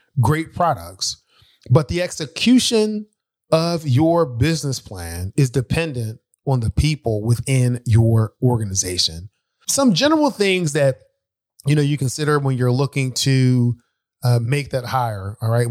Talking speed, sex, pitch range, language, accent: 135 wpm, male, 120-145 Hz, English, American